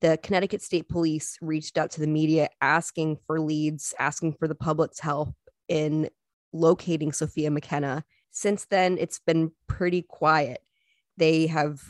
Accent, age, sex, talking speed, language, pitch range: American, 20-39, female, 145 wpm, English, 150-170 Hz